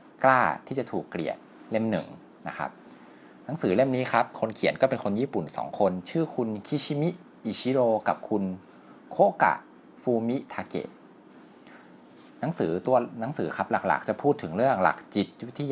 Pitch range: 90-115 Hz